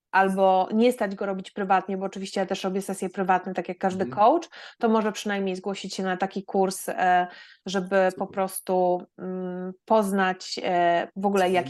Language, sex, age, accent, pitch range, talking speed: Polish, female, 20-39, native, 195-235 Hz, 165 wpm